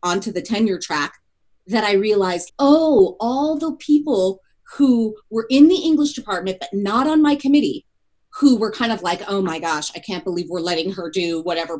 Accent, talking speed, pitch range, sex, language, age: American, 195 wpm, 195-285 Hz, female, English, 30-49